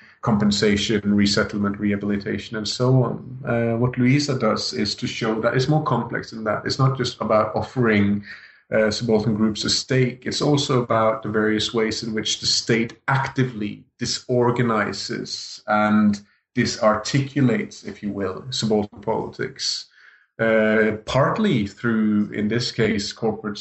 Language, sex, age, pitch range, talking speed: English, male, 30-49, 105-120 Hz, 140 wpm